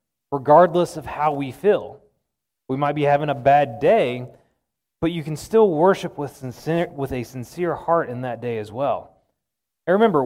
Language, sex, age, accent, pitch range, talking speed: English, male, 30-49, American, 130-170 Hz, 175 wpm